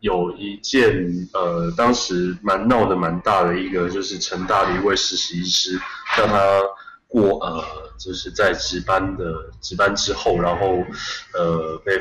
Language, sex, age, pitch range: Chinese, male, 20-39, 85-110 Hz